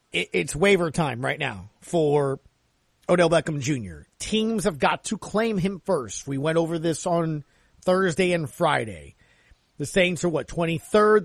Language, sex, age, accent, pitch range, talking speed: English, male, 40-59, American, 145-185 Hz, 155 wpm